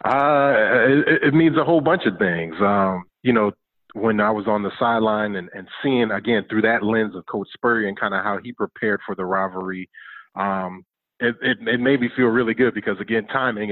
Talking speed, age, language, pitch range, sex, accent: 215 wpm, 30-49, English, 95-110 Hz, male, American